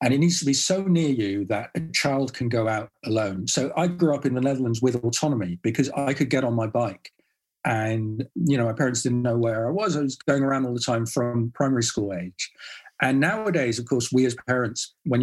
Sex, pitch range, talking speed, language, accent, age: male, 120-155 Hz, 235 wpm, English, British, 40-59